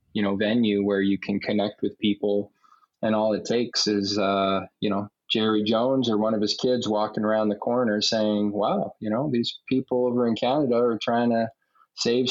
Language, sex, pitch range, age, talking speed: English, male, 100-115 Hz, 20-39, 200 wpm